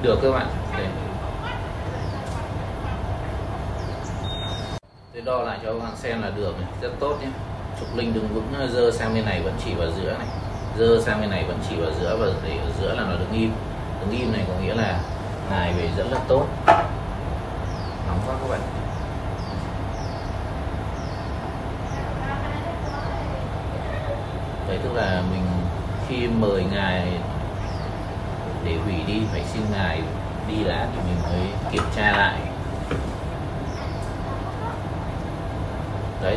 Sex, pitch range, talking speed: male, 95-110 Hz, 135 wpm